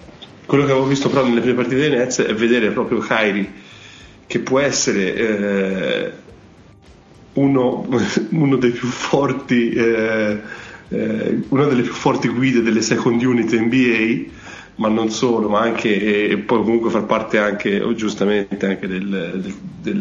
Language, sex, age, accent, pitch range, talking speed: Italian, male, 30-49, native, 105-120 Hz, 155 wpm